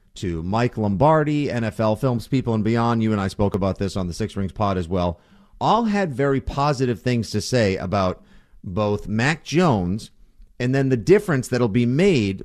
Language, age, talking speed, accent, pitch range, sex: English, 40-59, 190 wpm, American, 100-130 Hz, male